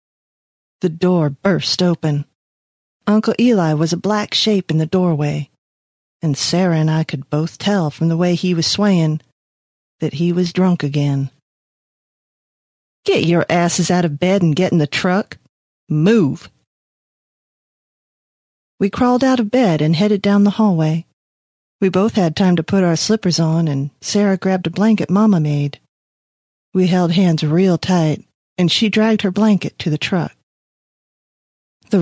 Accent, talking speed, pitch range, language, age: American, 155 wpm, 155-190 Hz, English, 40-59